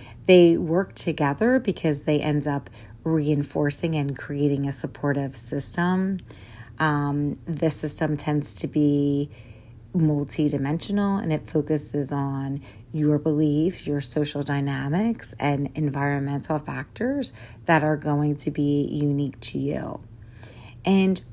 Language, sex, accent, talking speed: English, female, American, 115 wpm